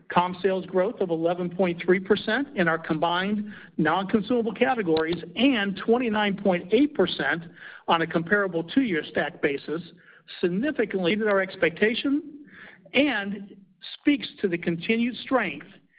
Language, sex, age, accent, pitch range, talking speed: English, male, 50-69, American, 175-230 Hz, 115 wpm